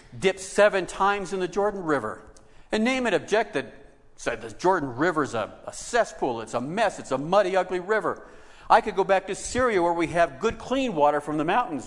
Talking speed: 200 wpm